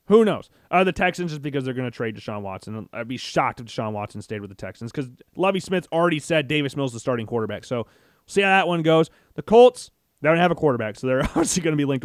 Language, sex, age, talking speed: English, male, 30-49, 275 wpm